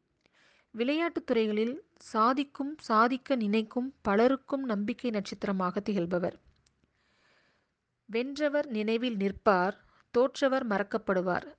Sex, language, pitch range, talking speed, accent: female, Tamil, 190-250 Hz, 70 wpm, native